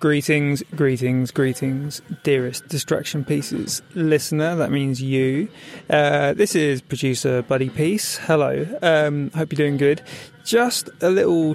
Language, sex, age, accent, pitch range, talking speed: English, male, 20-39, British, 135-155 Hz, 130 wpm